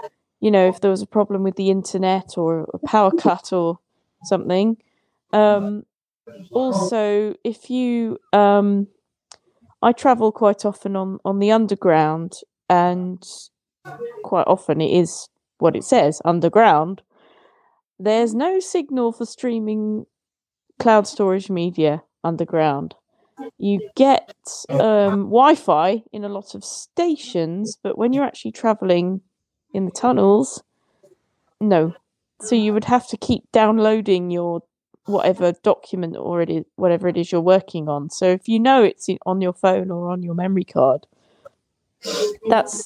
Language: English